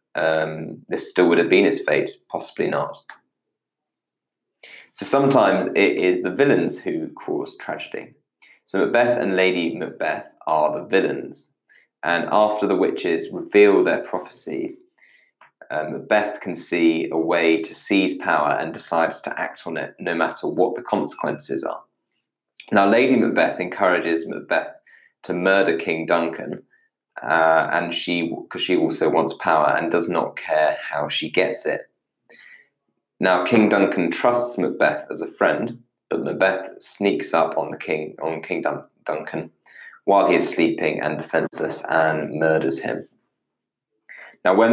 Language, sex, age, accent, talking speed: English, male, 20-39, British, 150 wpm